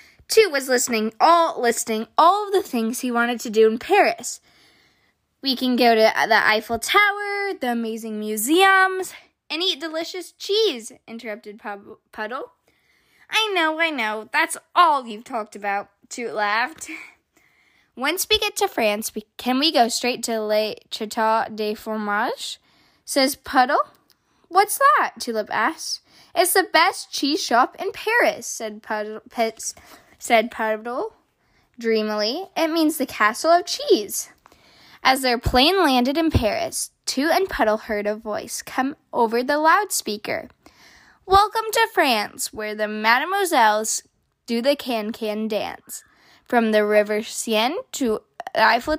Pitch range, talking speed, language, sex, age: 220-340 Hz, 140 wpm, English, female, 10-29